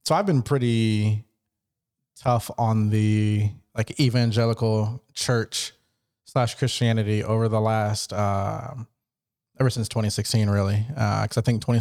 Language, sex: English, male